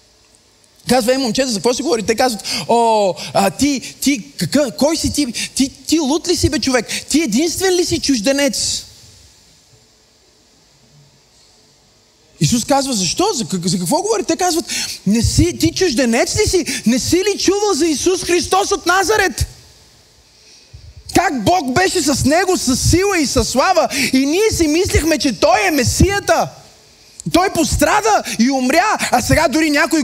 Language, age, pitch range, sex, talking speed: Bulgarian, 20-39, 250-350 Hz, male, 160 wpm